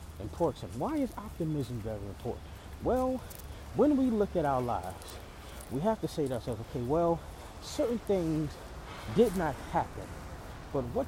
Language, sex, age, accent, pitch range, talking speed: English, male, 30-49, American, 105-160 Hz, 150 wpm